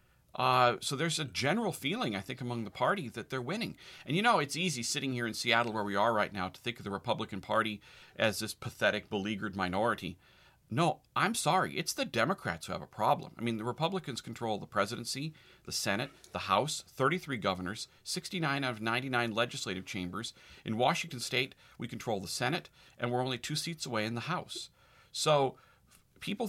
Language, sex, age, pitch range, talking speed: English, male, 40-59, 115-150 Hz, 195 wpm